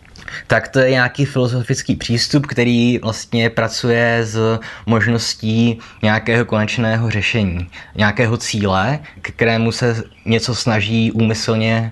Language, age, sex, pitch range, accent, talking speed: Czech, 20-39, male, 105-130 Hz, native, 110 wpm